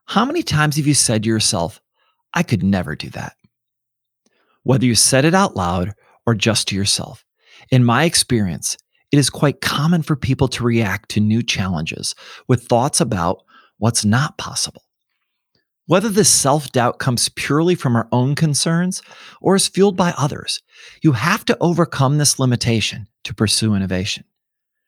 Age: 40-59